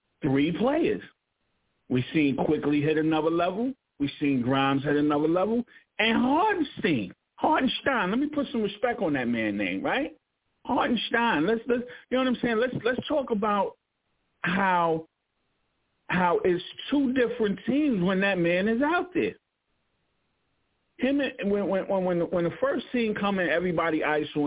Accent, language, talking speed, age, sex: American, English, 155 wpm, 50-69, male